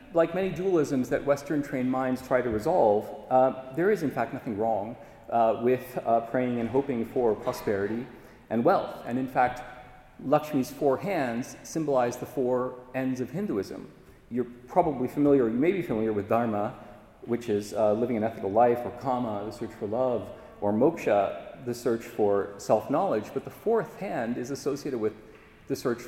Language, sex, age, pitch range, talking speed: English, male, 40-59, 115-140 Hz, 175 wpm